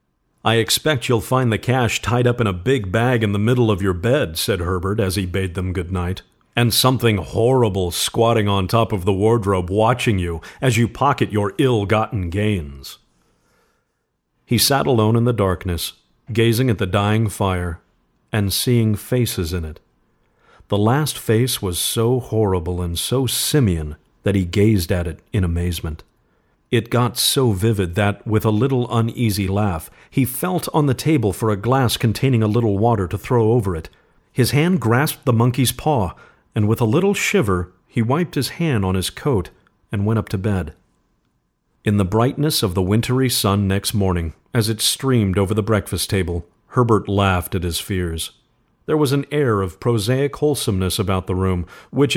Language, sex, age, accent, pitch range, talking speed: English, male, 50-69, American, 95-120 Hz, 180 wpm